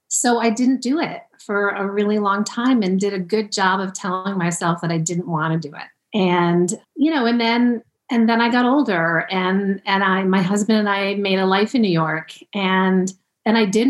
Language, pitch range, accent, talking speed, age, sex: English, 180-220 Hz, American, 225 wpm, 40-59, female